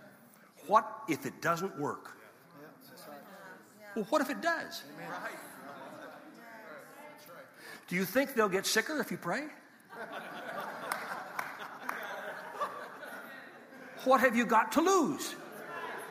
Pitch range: 210-300 Hz